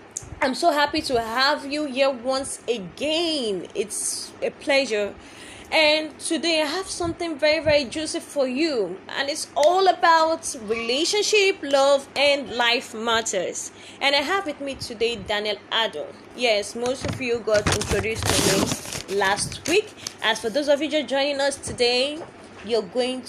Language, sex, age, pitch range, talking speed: English, female, 20-39, 230-335 Hz, 155 wpm